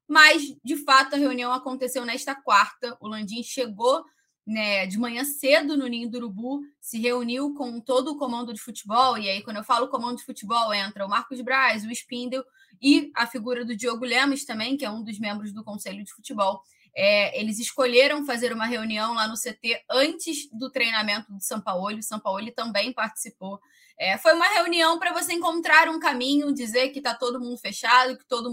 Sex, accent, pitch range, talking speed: female, Brazilian, 220-275 Hz, 190 wpm